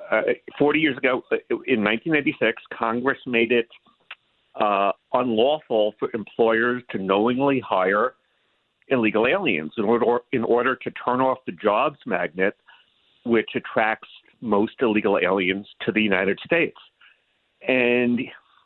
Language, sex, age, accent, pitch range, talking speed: English, male, 50-69, American, 110-135 Hz, 120 wpm